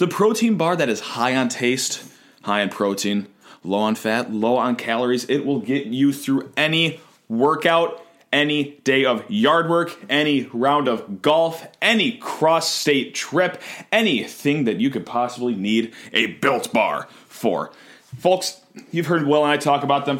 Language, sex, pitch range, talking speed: English, male, 125-175 Hz, 165 wpm